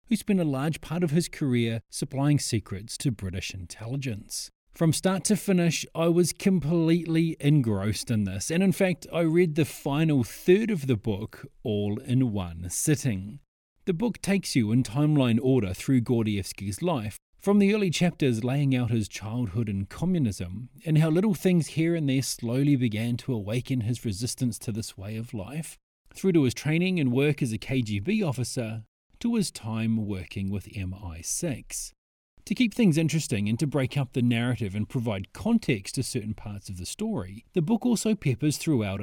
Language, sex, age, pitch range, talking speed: English, male, 30-49, 110-160 Hz, 180 wpm